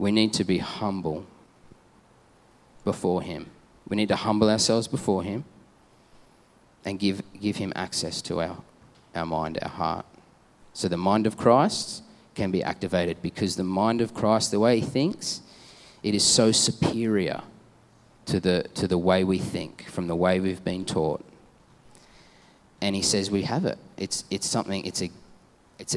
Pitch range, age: 90-105 Hz, 30-49